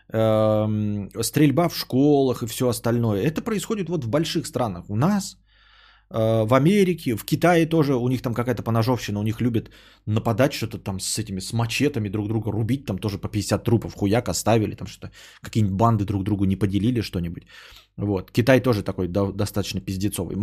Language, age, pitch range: Bulgarian, 20-39, 110-145 Hz